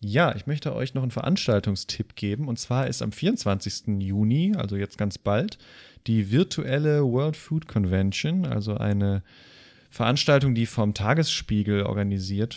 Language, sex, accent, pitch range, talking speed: German, male, German, 105-130 Hz, 145 wpm